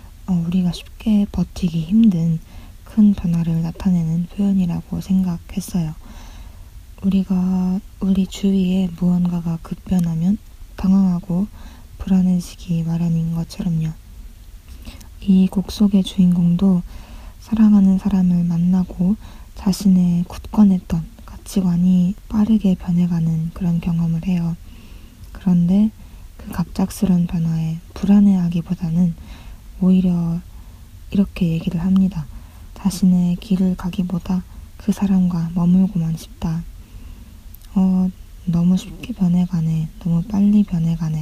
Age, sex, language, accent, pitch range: 20-39, female, Korean, native, 165-190 Hz